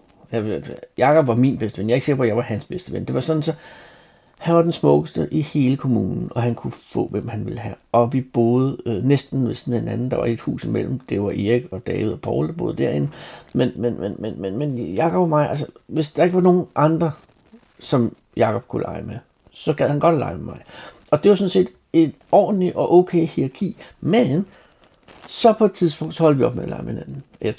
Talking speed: 245 wpm